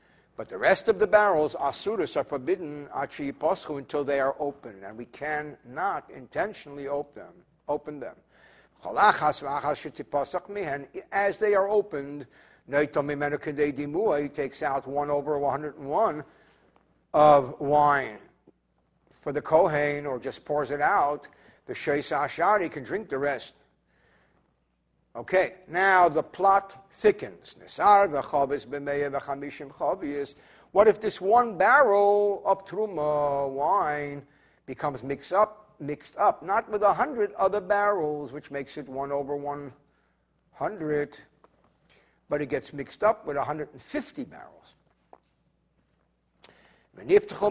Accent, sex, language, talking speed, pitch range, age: American, male, English, 105 wpm, 145-200 Hz, 60-79